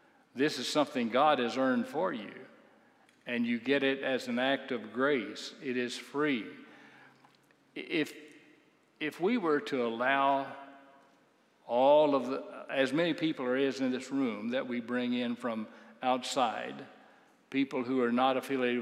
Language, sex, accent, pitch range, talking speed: English, male, American, 120-145 Hz, 150 wpm